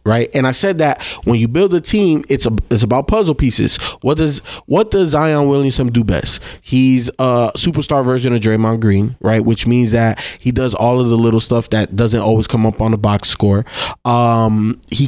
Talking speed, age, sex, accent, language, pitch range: 210 wpm, 20-39, male, American, English, 110-135 Hz